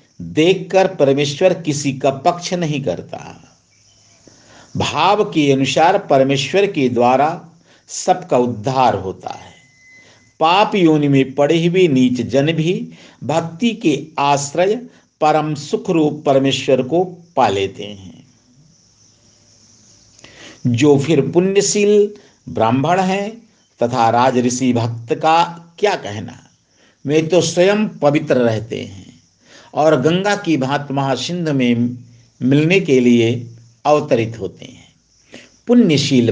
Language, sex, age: Hindi, male, 50-69